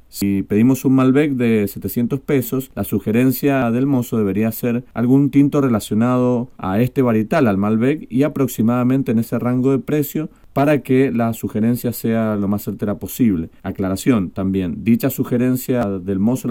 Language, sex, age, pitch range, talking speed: Spanish, male, 40-59, 110-135 Hz, 160 wpm